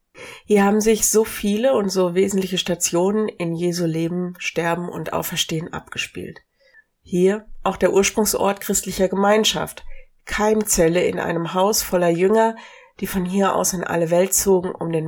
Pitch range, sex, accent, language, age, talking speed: 170-220 Hz, female, German, German, 60-79, 150 wpm